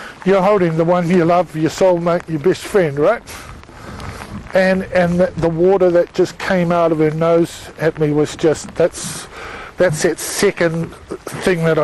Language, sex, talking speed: English, male, 170 wpm